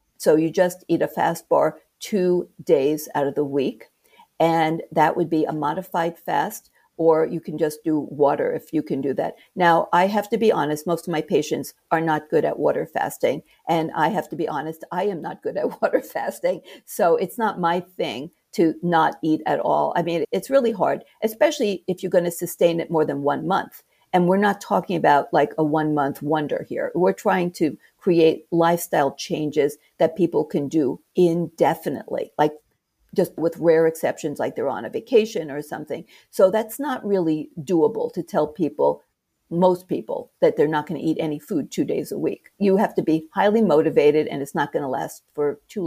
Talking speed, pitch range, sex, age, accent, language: 205 wpm, 155-195 Hz, female, 50-69, American, English